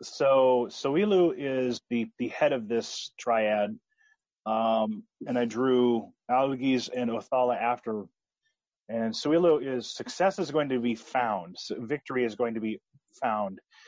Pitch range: 110-135 Hz